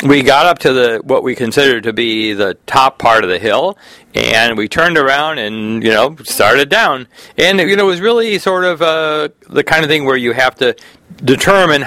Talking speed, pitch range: 215 wpm, 115-155 Hz